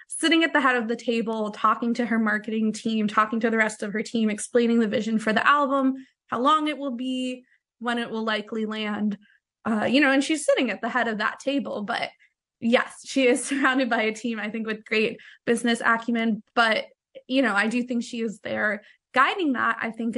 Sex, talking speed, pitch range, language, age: female, 220 wpm, 220-260 Hz, English, 20-39